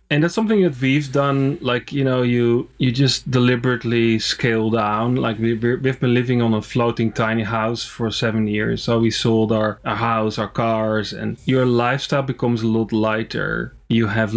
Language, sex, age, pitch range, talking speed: English, male, 30-49, 110-130 Hz, 190 wpm